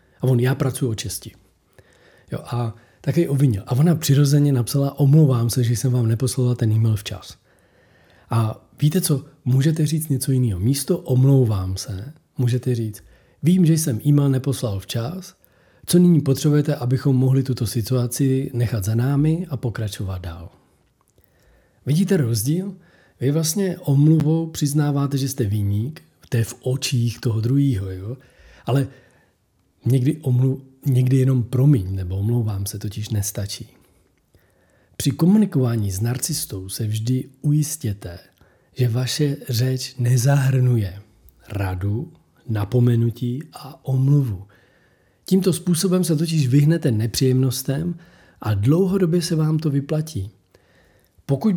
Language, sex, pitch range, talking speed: Czech, male, 115-145 Hz, 125 wpm